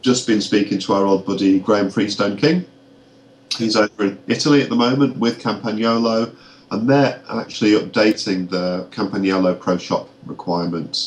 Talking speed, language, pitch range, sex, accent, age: 150 wpm, English, 90-105 Hz, male, British, 40-59